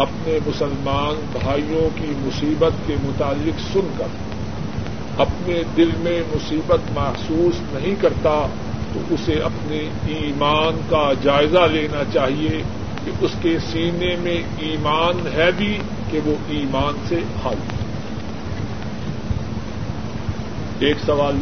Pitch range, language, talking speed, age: 140-170 Hz, Urdu, 110 wpm, 50-69